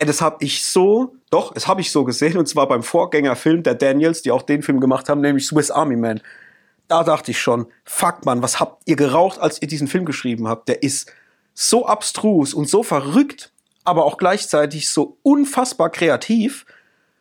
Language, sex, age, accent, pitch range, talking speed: German, male, 30-49, German, 145-180 Hz, 190 wpm